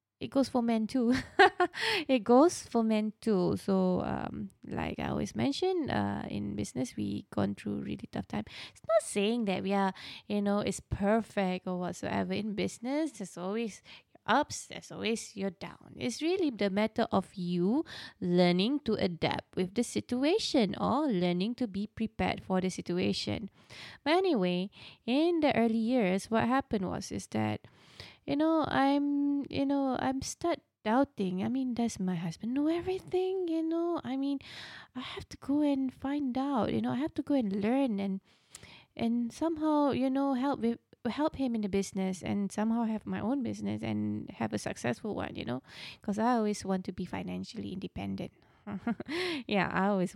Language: English